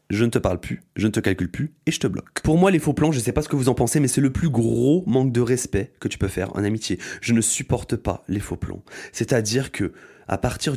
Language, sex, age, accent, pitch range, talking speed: French, male, 20-39, French, 105-145 Hz, 295 wpm